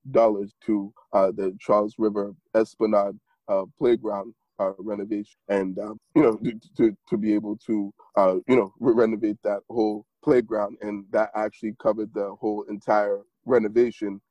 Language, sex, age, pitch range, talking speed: English, male, 20-39, 105-115 Hz, 145 wpm